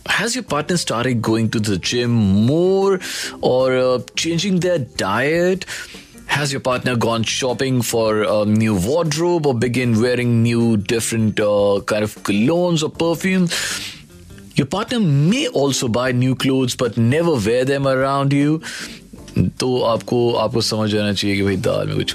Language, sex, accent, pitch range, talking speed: Hindi, male, native, 105-155 Hz, 155 wpm